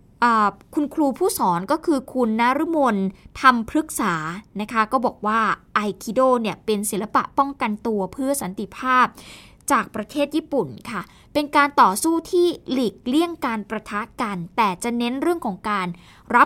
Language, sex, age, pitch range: Thai, female, 20-39, 215-285 Hz